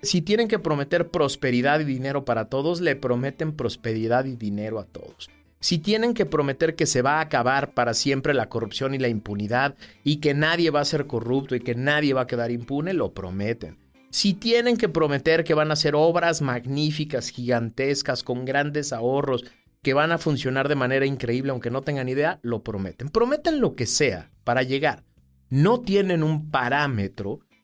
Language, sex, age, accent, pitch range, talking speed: Spanish, male, 40-59, Mexican, 125-165 Hz, 185 wpm